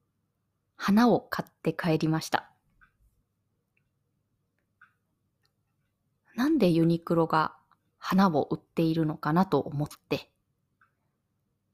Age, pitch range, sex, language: 20-39, 130-200 Hz, female, Japanese